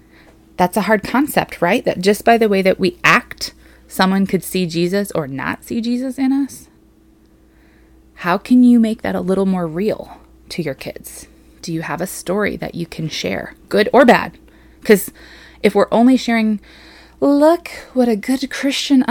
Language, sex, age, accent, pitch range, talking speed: English, female, 20-39, American, 180-245 Hz, 180 wpm